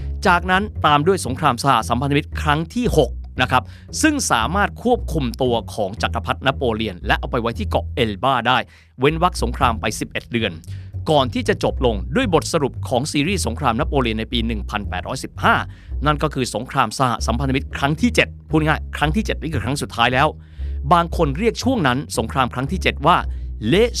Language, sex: Thai, male